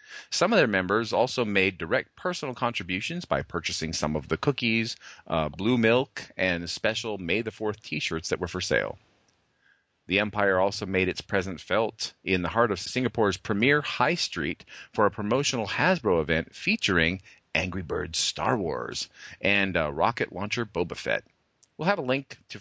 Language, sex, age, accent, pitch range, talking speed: English, male, 40-59, American, 90-120 Hz, 170 wpm